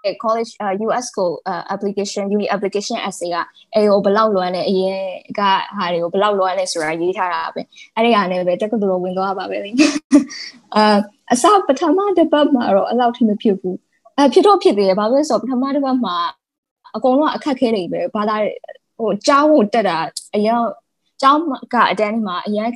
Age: 10-29